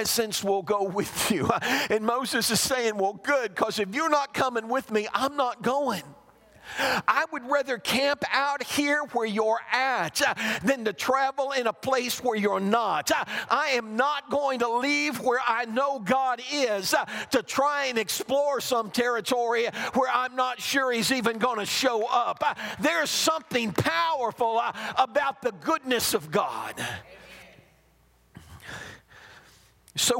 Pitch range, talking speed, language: 160-255 Hz, 150 wpm, English